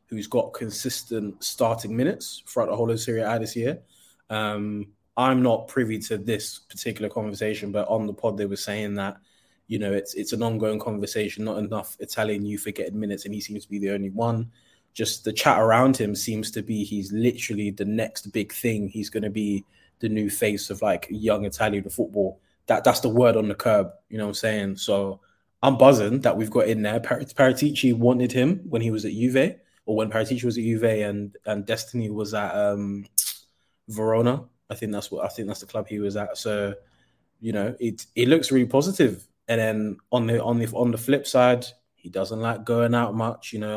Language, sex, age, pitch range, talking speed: English, male, 20-39, 105-115 Hz, 215 wpm